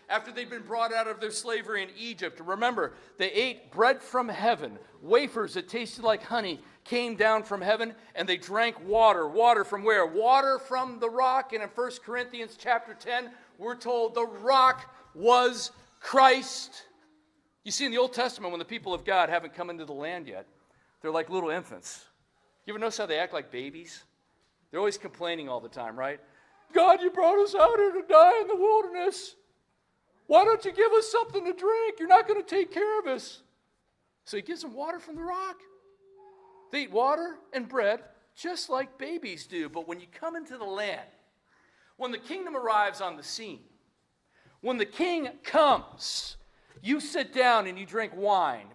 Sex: male